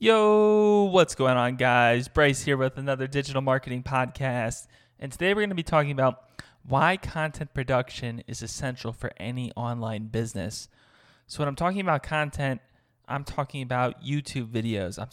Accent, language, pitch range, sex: American, English, 120-145 Hz, male